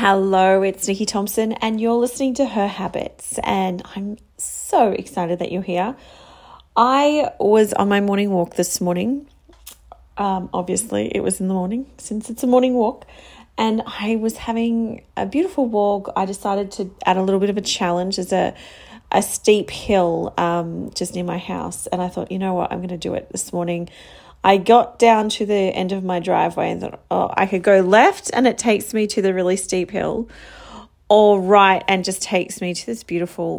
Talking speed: 200 wpm